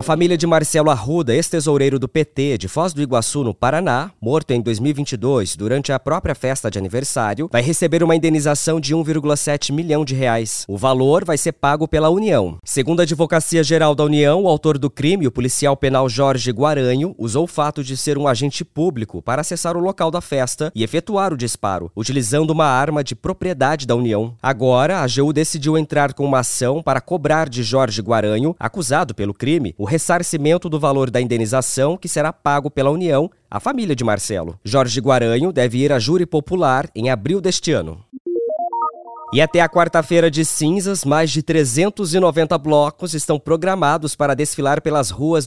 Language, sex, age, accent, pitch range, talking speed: English, male, 20-39, Brazilian, 130-170 Hz, 180 wpm